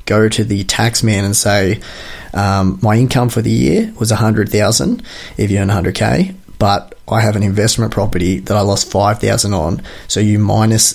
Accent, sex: Australian, male